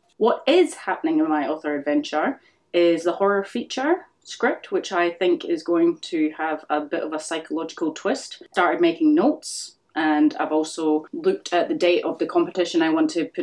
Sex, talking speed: female, 190 wpm